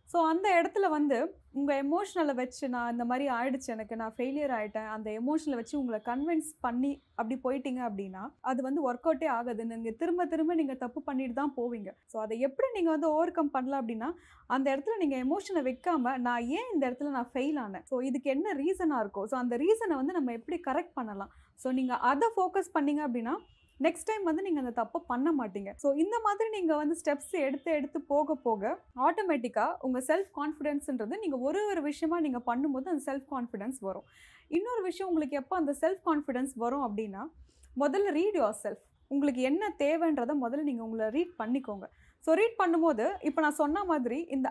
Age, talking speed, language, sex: 20-39, 185 wpm, Tamil, female